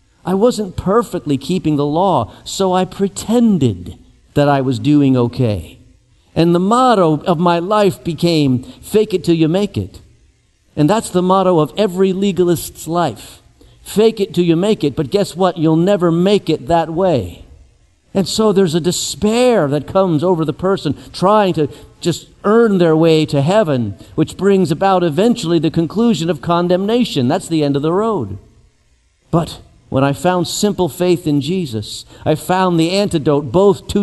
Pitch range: 145-200 Hz